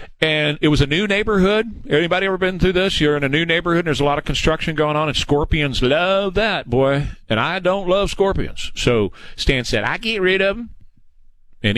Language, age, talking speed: English, 50-69, 220 wpm